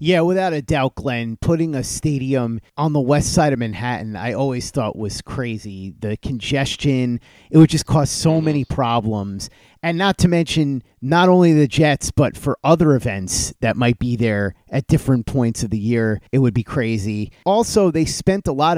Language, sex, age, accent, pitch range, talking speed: English, male, 30-49, American, 115-150 Hz, 190 wpm